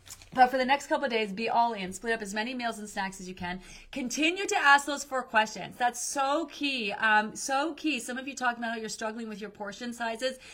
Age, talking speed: 30-49, 250 wpm